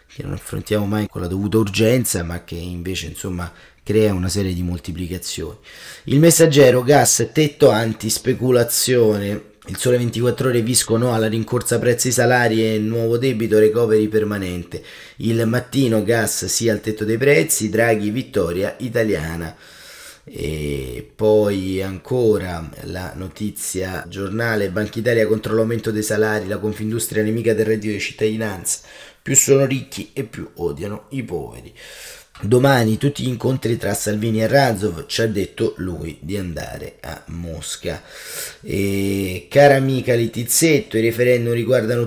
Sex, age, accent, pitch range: male, 30-49, native, 95-115 Hz